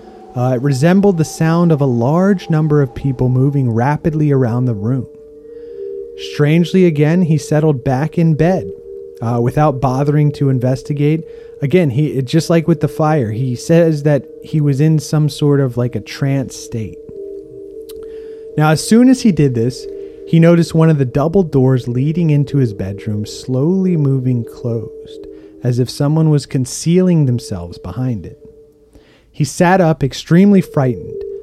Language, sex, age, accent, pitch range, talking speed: English, male, 30-49, American, 130-170 Hz, 155 wpm